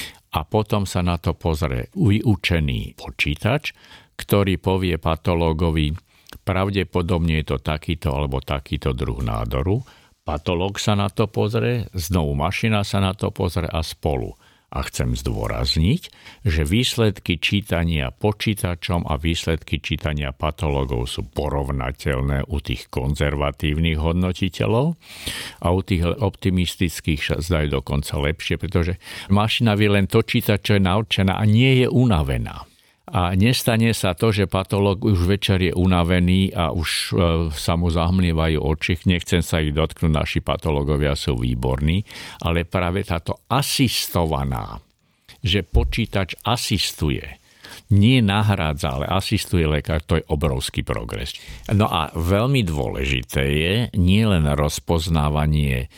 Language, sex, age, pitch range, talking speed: Slovak, male, 50-69, 75-100 Hz, 120 wpm